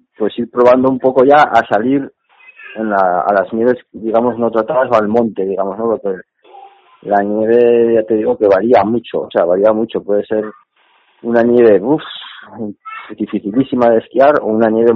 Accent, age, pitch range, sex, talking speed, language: Spanish, 30-49, 105-130 Hz, male, 180 wpm, Spanish